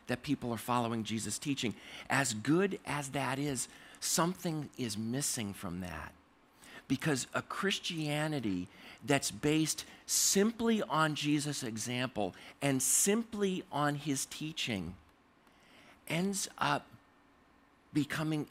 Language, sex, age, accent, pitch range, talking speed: English, male, 50-69, American, 130-170 Hz, 105 wpm